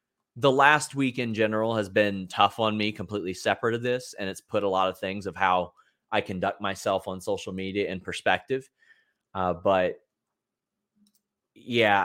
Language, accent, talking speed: English, American, 170 wpm